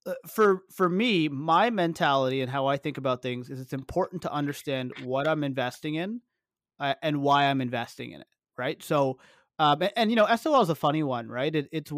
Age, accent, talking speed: 30-49, American, 210 wpm